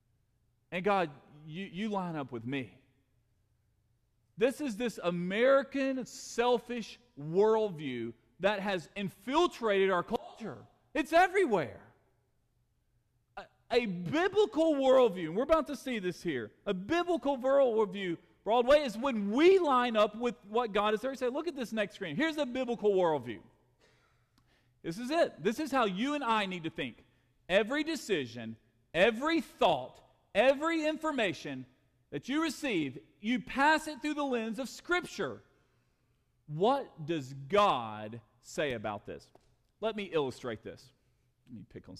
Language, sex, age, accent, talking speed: English, male, 40-59, American, 140 wpm